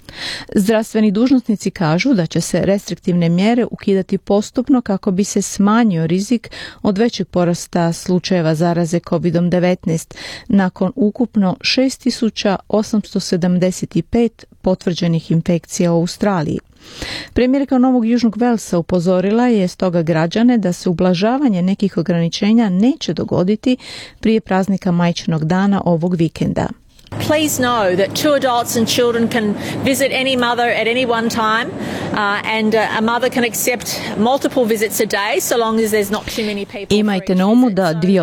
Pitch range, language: 180-230 Hz, Croatian